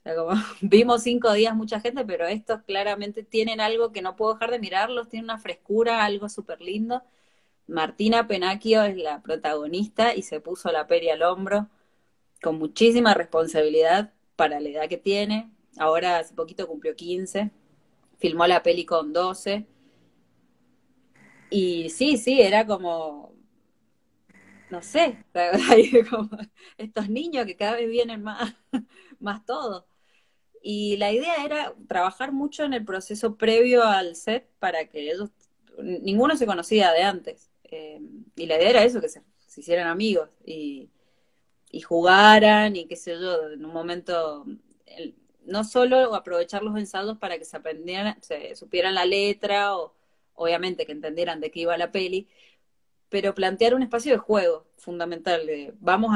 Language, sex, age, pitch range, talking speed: Spanish, female, 20-39, 170-225 Hz, 155 wpm